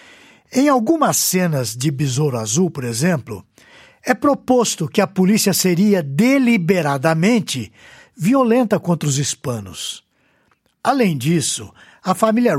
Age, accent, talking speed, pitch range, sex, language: 60-79, Brazilian, 110 wpm, 140-210 Hz, male, Portuguese